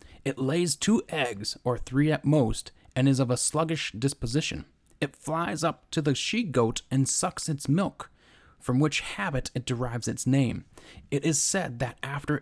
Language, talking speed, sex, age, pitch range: English, 175 wpm, male, 30-49, 115-140 Hz